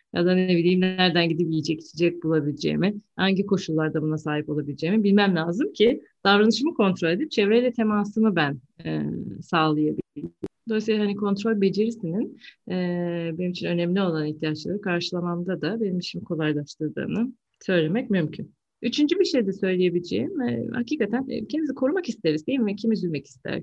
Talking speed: 135 wpm